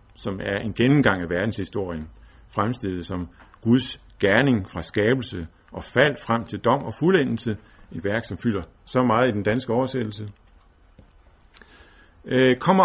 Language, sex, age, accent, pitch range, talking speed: Danish, male, 50-69, native, 85-130 Hz, 140 wpm